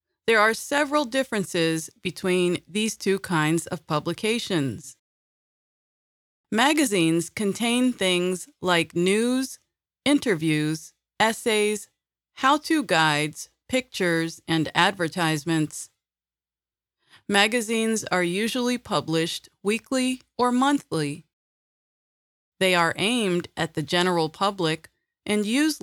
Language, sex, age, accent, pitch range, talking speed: English, female, 30-49, American, 160-220 Hz, 90 wpm